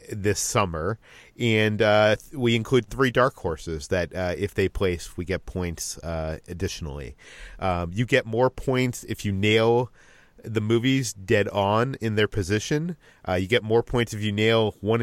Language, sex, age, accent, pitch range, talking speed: English, male, 30-49, American, 95-120 Hz, 170 wpm